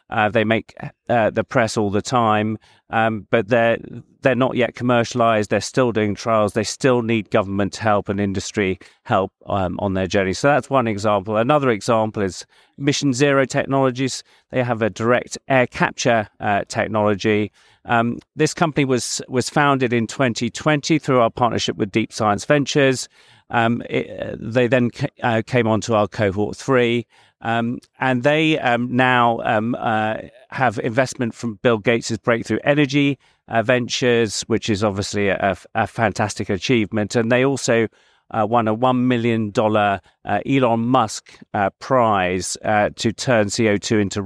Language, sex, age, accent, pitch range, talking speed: English, male, 40-59, British, 105-125 Hz, 165 wpm